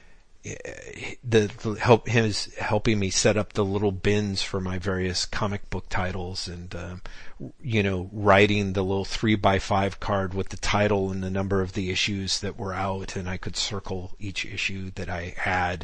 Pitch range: 95-110 Hz